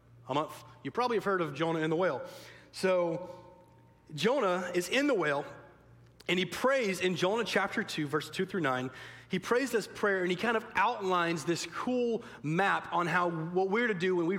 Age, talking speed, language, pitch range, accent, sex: 30-49, 190 wpm, English, 130-190 Hz, American, male